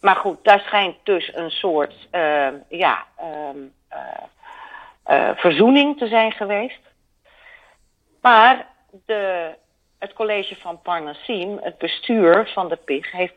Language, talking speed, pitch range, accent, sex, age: Dutch, 125 wpm, 150-205 Hz, Dutch, female, 40-59